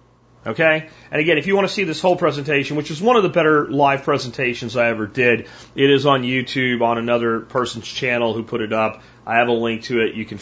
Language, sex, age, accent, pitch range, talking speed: English, male, 40-59, American, 115-150 Hz, 240 wpm